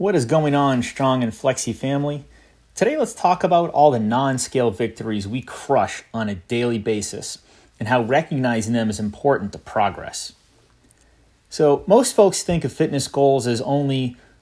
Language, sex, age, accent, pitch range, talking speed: English, male, 30-49, American, 115-145 Hz, 160 wpm